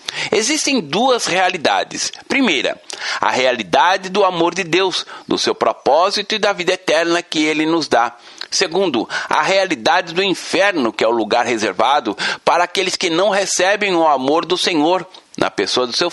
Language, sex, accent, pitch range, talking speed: Portuguese, male, Brazilian, 135-190 Hz, 165 wpm